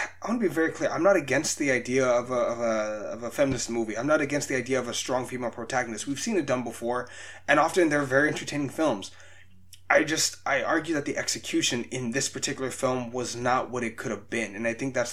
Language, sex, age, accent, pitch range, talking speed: English, male, 20-39, American, 110-135 Hz, 245 wpm